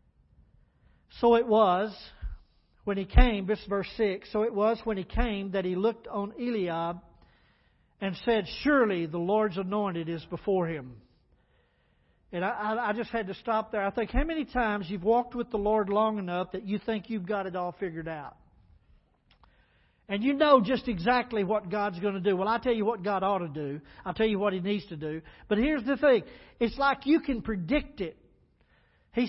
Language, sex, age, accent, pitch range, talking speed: English, male, 50-69, American, 185-235 Hz, 200 wpm